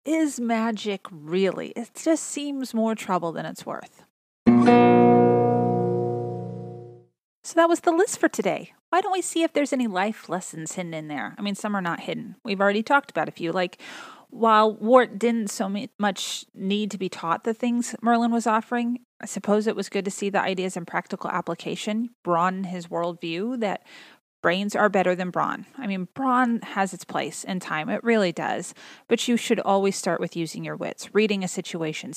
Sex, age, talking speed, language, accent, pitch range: female, 30-49, 190 wpm, English, American, 180-235 Hz